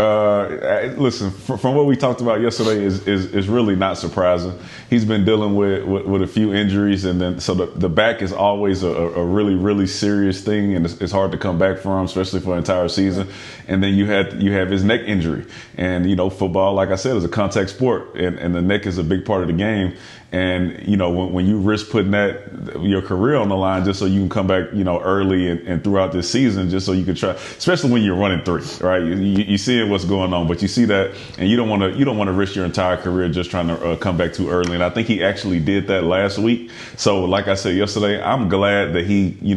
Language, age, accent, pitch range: English, 30-49, American, 90-100 Hz